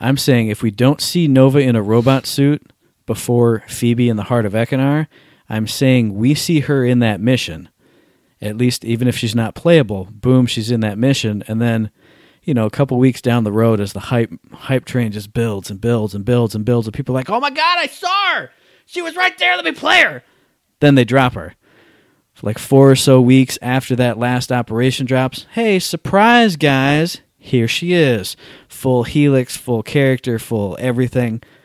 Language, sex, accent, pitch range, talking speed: English, male, American, 110-135 Hz, 195 wpm